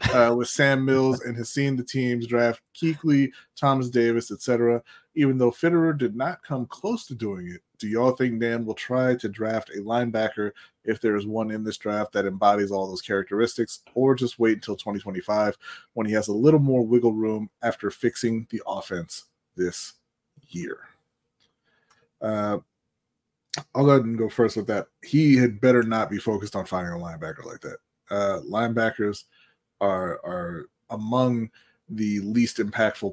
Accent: American